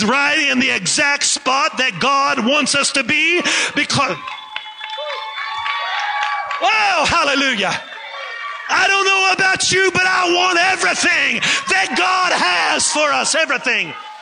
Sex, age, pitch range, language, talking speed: male, 40-59, 200-305 Hz, English, 120 wpm